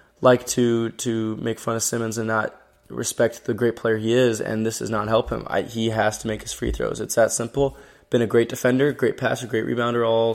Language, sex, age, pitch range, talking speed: English, male, 20-39, 105-120 Hz, 230 wpm